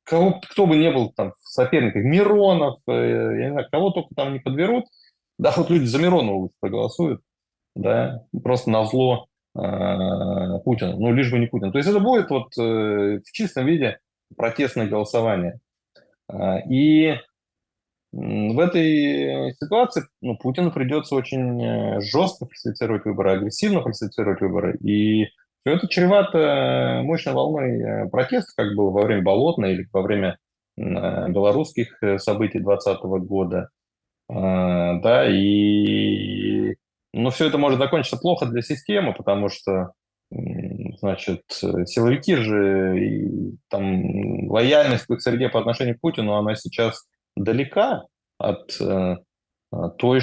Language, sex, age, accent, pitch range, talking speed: Russian, male, 20-39, native, 100-155 Hz, 120 wpm